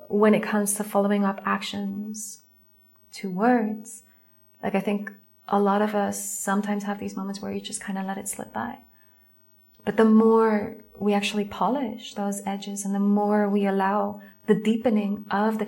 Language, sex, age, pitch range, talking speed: English, female, 30-49, 195-220 Hz, 175 wpm